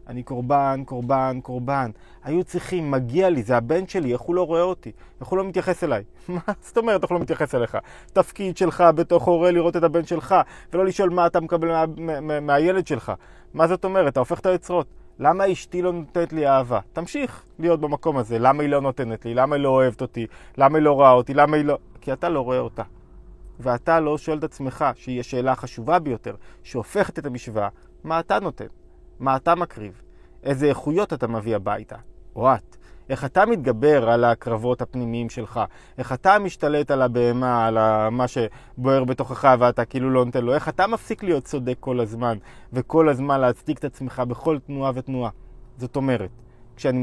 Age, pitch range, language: 20-39, 125-170 Hz, Hebrew